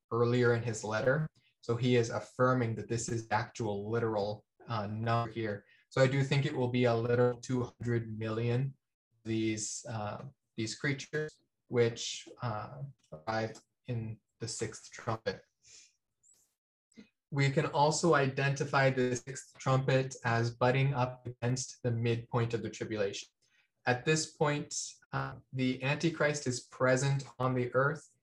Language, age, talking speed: English, 20-39, 140 wpm